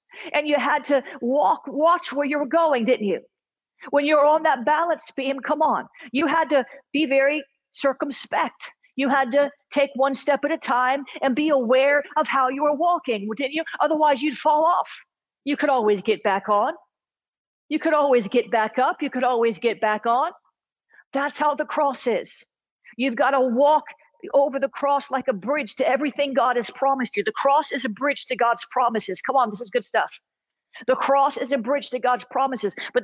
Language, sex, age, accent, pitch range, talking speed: English, female, 50-69, American, 245-290 Hz, 200 wpm